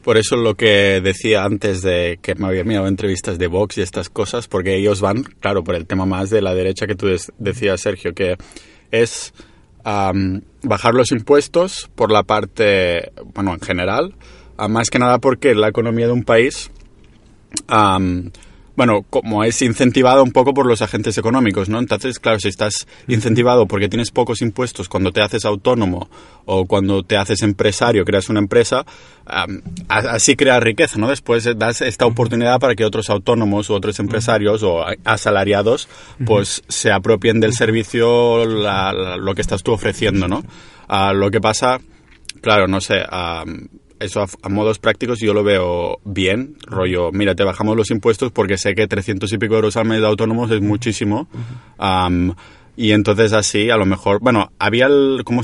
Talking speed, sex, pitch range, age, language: 170 wpm, male, 100-115 Hz, 30-49, Spanish